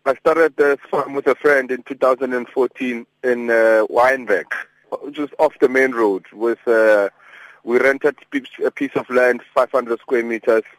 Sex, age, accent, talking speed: male, 30-49, South African, 155 wpm